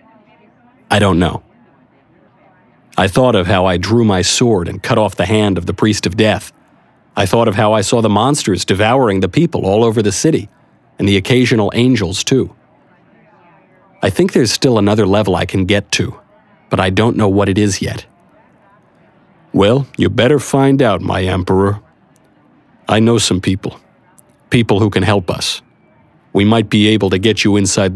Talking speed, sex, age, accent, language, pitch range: 180 wpm, male, 50-69, American, English, 95-115 Hz